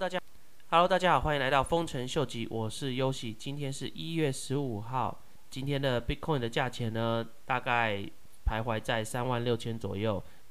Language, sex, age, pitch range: Chinese, male, 20-39, 100-125 Hz